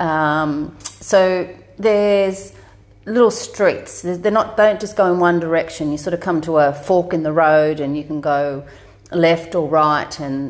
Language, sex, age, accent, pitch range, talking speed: English, female, 40-59, Australian, 145-170 Hz, 175 wpm